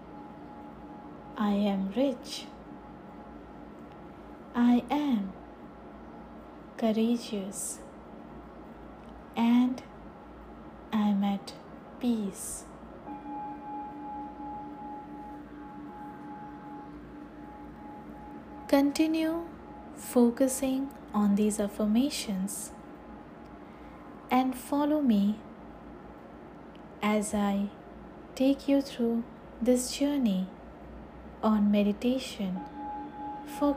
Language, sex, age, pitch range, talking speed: English, female, 20-39, 225-280 Hz, 50 wpm